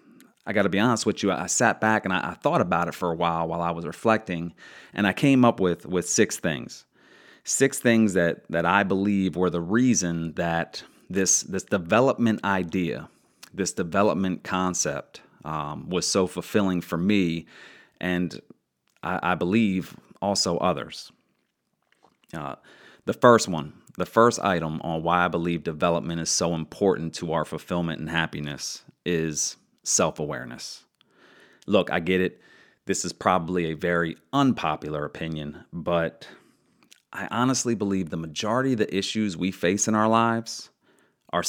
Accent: American